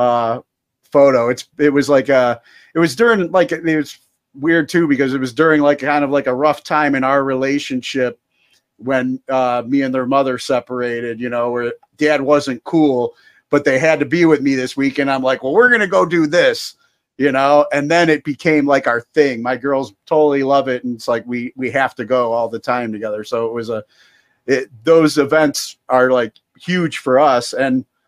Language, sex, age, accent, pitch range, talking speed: English, male, 40-59, American, 125-160 Hz, 210 wpm